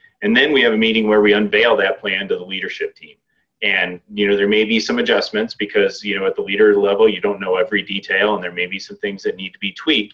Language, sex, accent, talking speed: English, male, American, 270 wpm